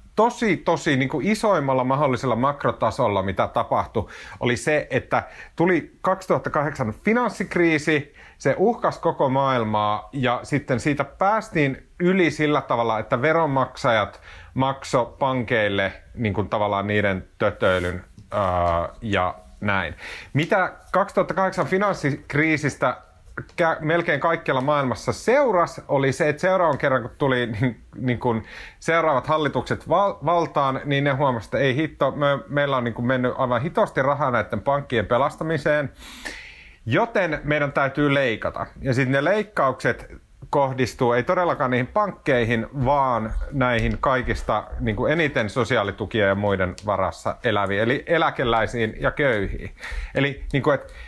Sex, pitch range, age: male, 120-160 Hz, 30-49